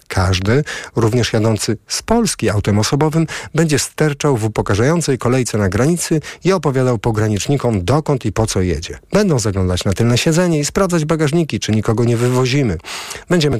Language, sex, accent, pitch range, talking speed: Polish, male, native, 105-130 Hz, 155 wpm